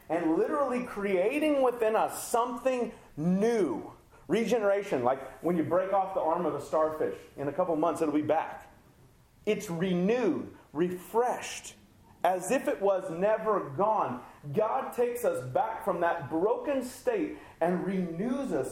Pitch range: 150-215 Hz